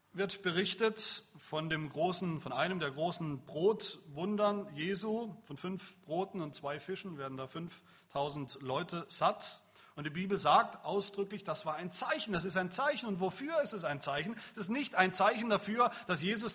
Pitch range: 135-195 Hz